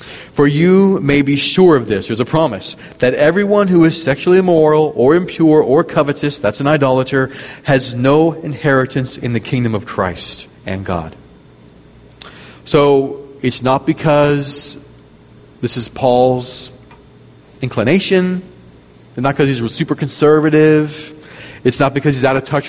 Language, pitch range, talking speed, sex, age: English, 110-150 Hz, 145 wpm, male, 40-59